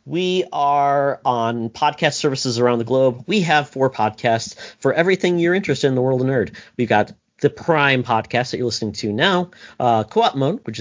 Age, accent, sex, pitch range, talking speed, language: 40-59, American, male, 105-145 Hz, 195 wpm, English